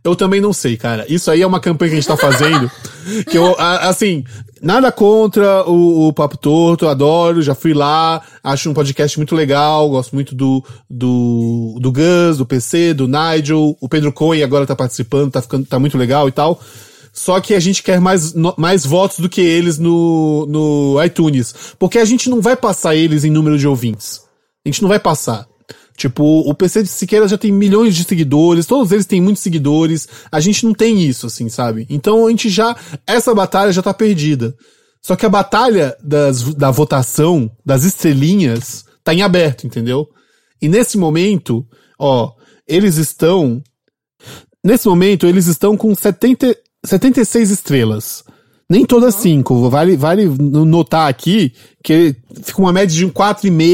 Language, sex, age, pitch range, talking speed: Portuguese, male, 20-39, 140-190 Hz, 180 wpm